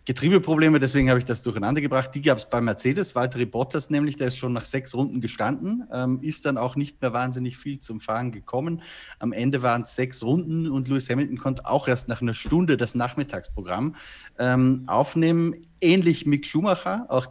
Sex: male